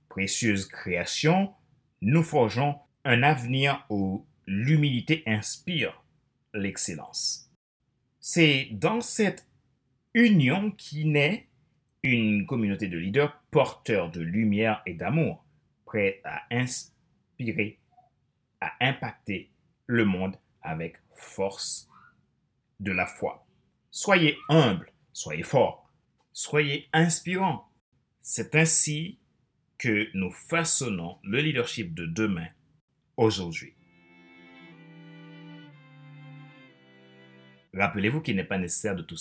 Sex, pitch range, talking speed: male, 95-150 Hz, 90 wpm